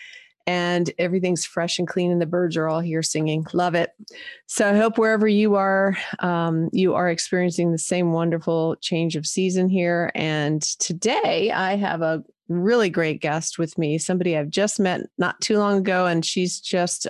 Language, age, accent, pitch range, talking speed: English, 30-49, American, 170-215 Hz, 185 wpm